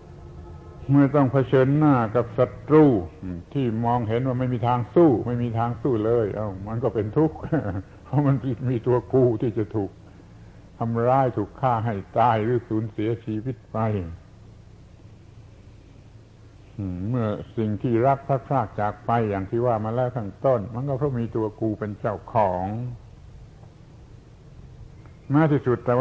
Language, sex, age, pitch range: Thai, male, 70-89, 105-125 Hz